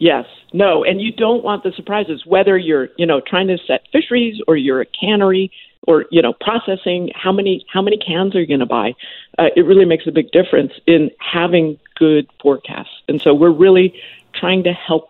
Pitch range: 160-200 Hz